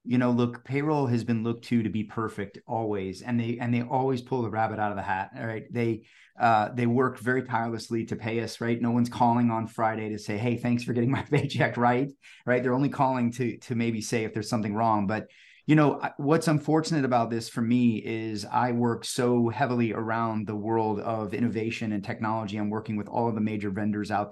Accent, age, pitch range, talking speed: American, 30-49, 110-125 Hz, 225 wpm